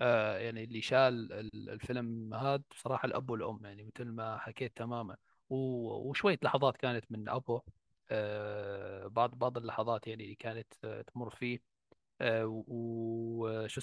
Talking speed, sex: 115 wpm, male